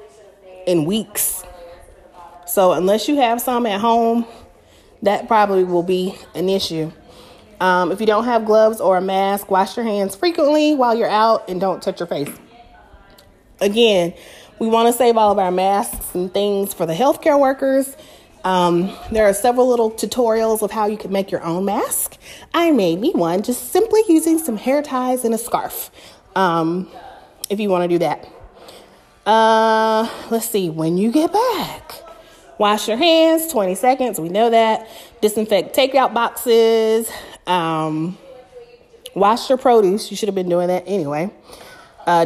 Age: 30-49